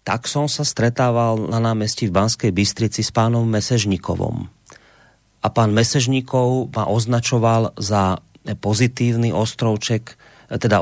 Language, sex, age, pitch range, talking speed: Slovak, male, 30-49, 110-130 Hz, 115 wpm